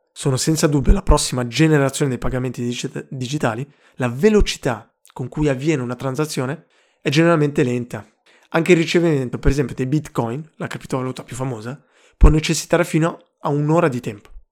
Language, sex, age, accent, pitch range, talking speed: Italian, male, 20-39, native, 130-160 Hz, 155 wpm